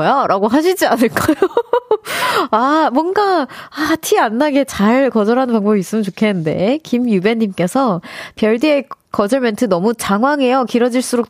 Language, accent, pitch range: Korean, native, 195-280 Hz